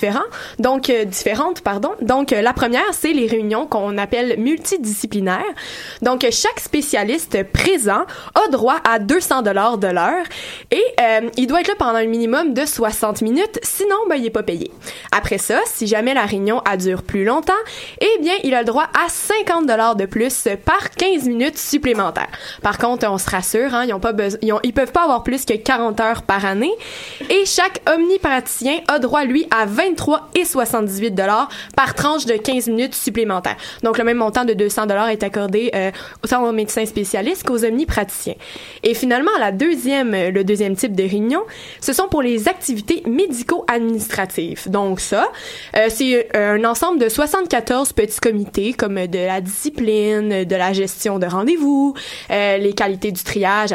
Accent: Canadian